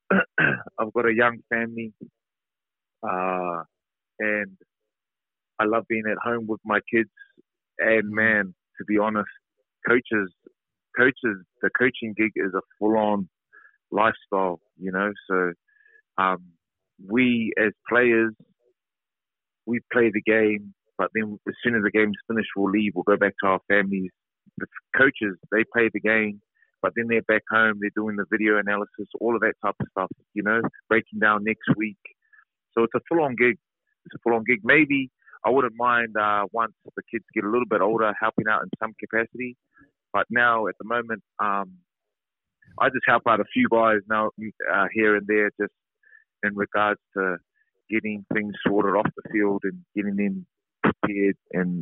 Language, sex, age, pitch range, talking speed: English, male, 30-49, 100-115 Hz, 170 wpm